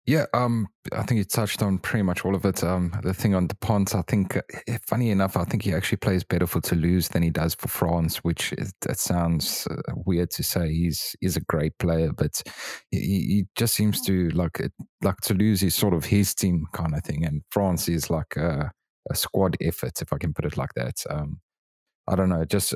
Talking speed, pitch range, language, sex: 225 wpm, 85-100 Hz, English, male